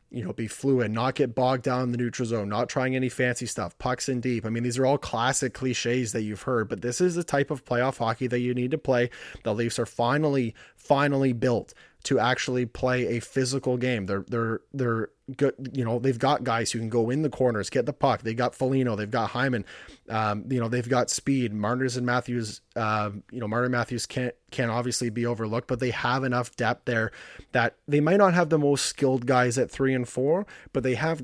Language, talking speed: English, 230 wpm